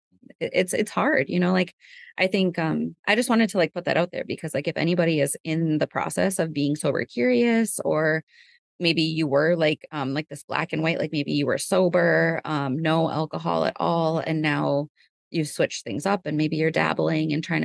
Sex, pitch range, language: female, 155-180 Hz, English